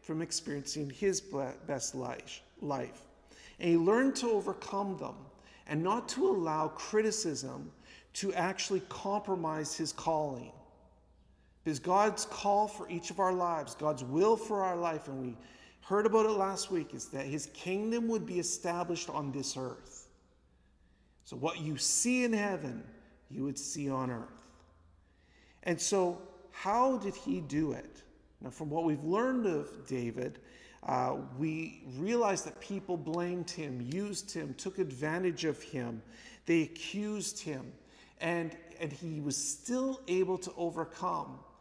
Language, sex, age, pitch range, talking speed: English, male, 50-69, 150-195 Hz, 145 wpm